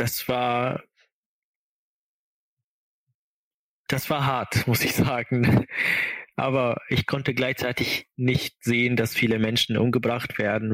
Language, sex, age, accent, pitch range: German, male, 20-39, German, 110-125 Hz